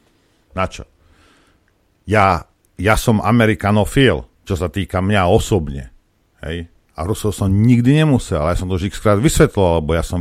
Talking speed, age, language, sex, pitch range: 160 wpm, 50-69, Slovak, male, 80-105 Hz